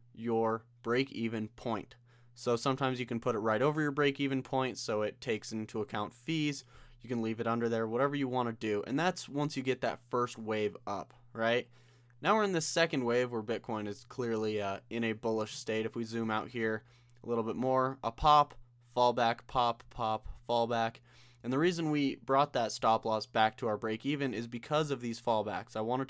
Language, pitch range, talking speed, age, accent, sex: English, 115-135 Hz, 210 wpm, 20-39, American, male